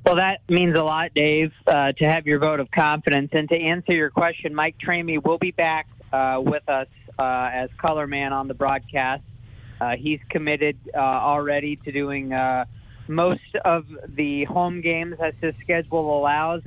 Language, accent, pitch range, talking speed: English, American, 125-155 Hz, 180 wpm